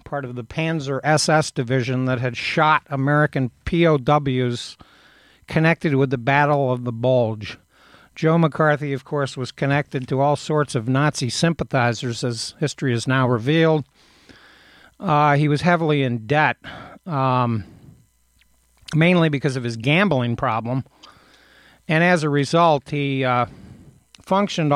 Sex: male